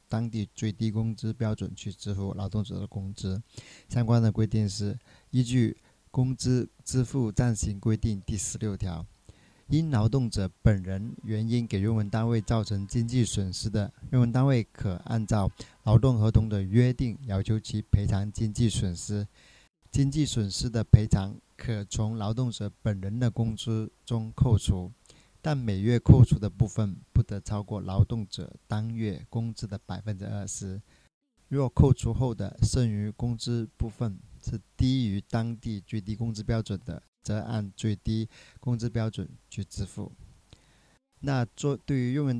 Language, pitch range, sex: Chinese, 105-120 Hz, male